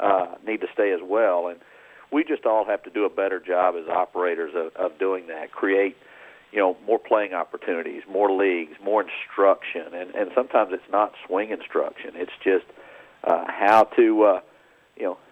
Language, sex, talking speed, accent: English, male, 190 wpm, American